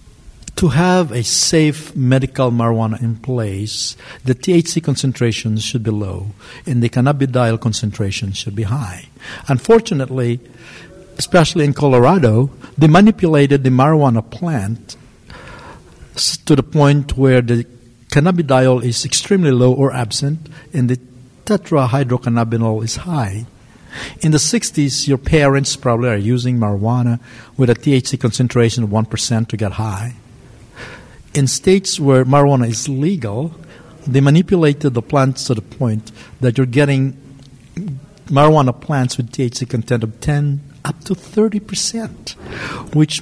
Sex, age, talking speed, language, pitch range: male, 60-79, 130 wpm, English, 120-145 Hz